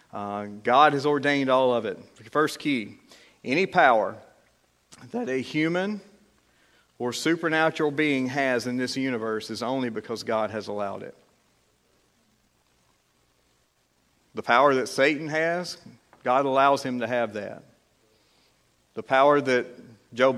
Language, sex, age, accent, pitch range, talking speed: English, male, 50-69, American, 115-150 Hz, 125 wpm